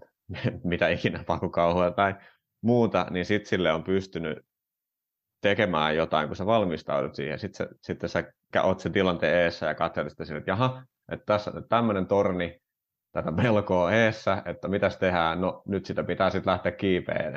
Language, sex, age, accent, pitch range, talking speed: Finnish, male, 30-49, native, 85-100 Hz, 160 wpm